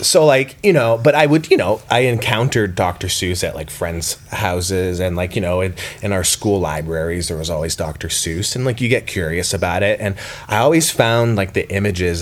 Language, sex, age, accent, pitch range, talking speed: English, male, 30-49, American, 90-115 Hz, 220 wpm